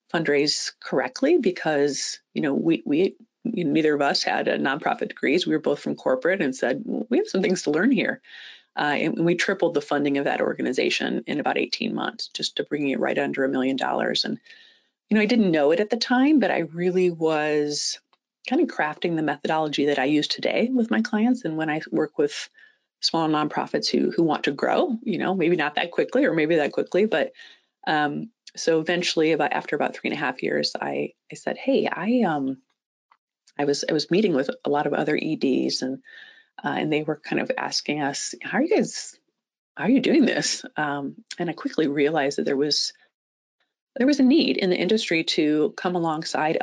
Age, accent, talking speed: 30-49, American, 215 wpm